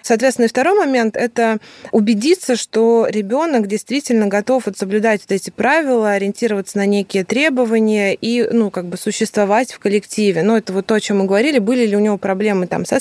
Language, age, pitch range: Russian, 20-39, 190-230 Hz